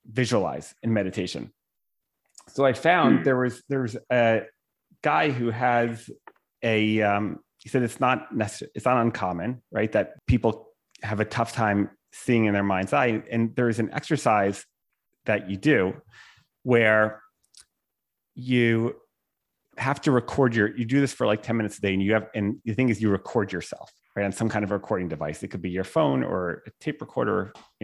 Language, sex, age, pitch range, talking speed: English, male, 30-49, 105-130 Hz, 185 wpm